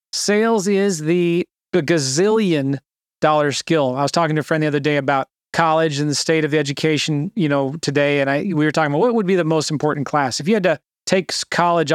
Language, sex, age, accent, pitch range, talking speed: English, male, 30-49, American, 145-180 Hz, 225 wpm